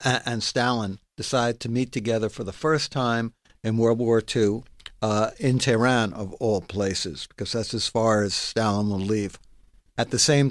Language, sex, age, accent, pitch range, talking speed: English, male, 60-79, American, 110-135 Hz, 175 wpm